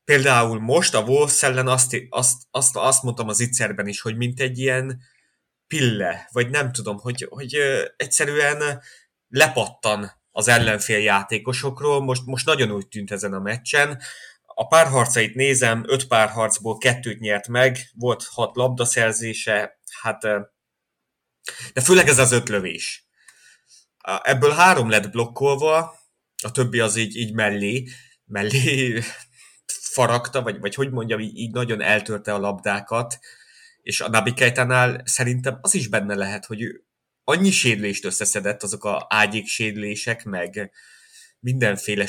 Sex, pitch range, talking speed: male, 105-130 Hz, 135 wpm